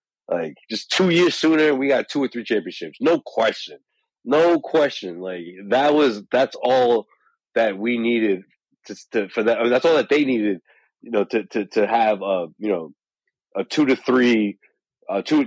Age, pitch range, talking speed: 30-49, 100-140 Hz, 185 wpm